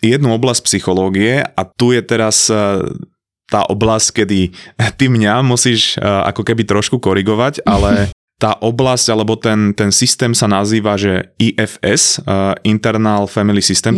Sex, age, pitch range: male, 20-39, 100-120 Hz